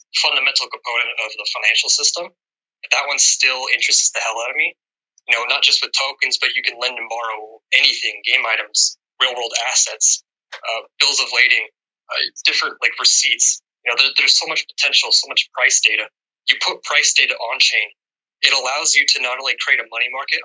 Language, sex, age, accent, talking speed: English, male, 20-39, American, 195 wpm